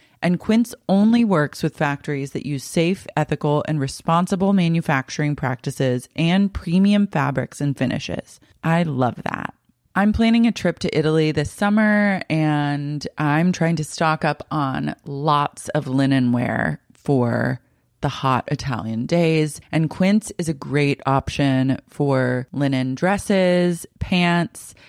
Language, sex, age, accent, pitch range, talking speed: English, female, 30-49, American, 140-180 Hz, 135 wpm